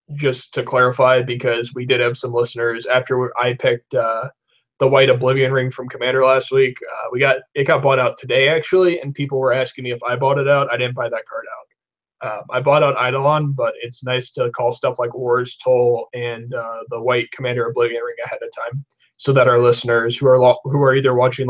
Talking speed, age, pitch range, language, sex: 225 wpm, 20-39, 125-140 Hz, English, male